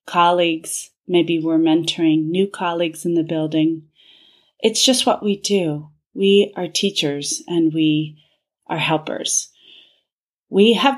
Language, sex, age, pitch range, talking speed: English, female, 30-49, 160-215 Hz, 125 wpm